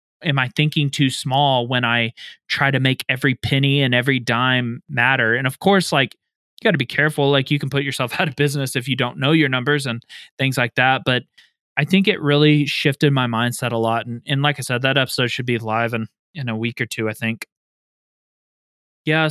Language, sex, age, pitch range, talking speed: English, male, 20-39, 120-140 Hz, 220 wpm